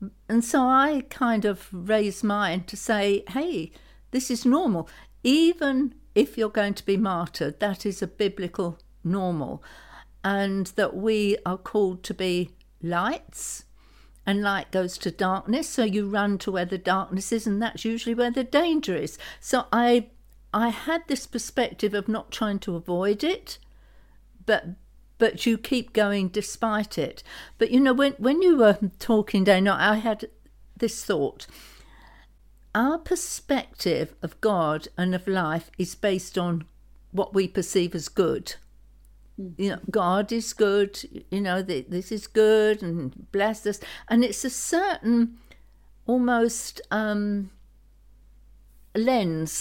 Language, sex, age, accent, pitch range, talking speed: English, female, 60-79, British, 190-235 Hz, 145 wpm